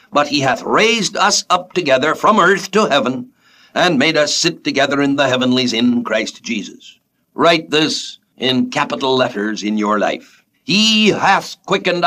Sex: male